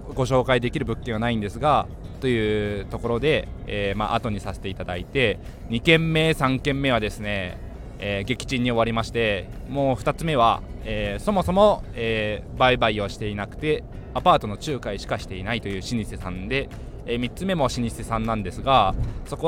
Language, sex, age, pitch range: Japanese, male, 20-39, 105-140 Hz